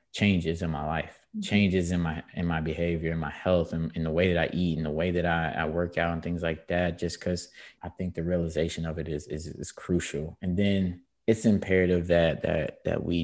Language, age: English, 20-39